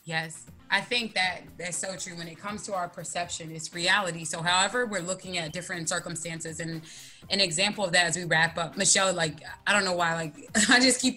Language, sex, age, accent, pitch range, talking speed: English, female, 20-39, American, 185-235 Hz, 220 wpm